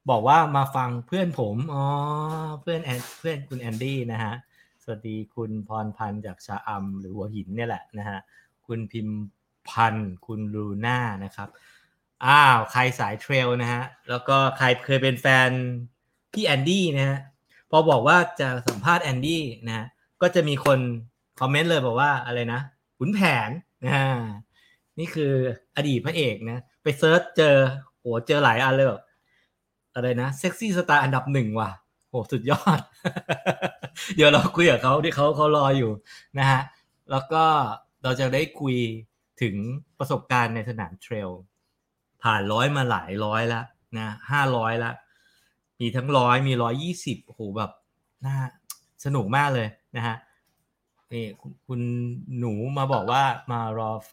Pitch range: 115-140 Hz